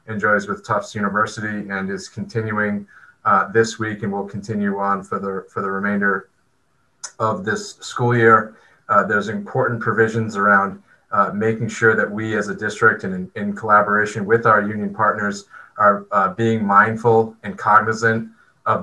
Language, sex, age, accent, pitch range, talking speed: English, male, 30-49, American, 100-115 Hz, 165 wpm